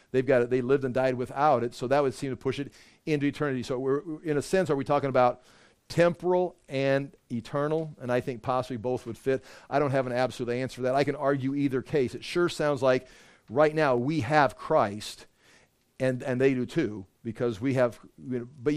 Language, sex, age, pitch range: English, male, 40-59, 125-175 Hz